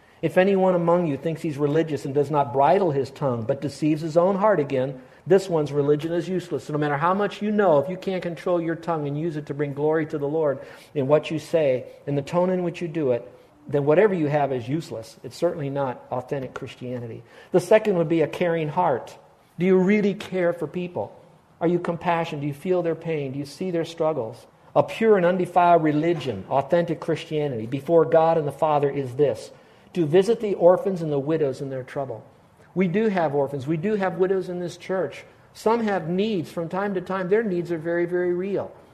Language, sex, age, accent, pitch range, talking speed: English, male, 50-69, American, 145-185 Hz, 220 wpm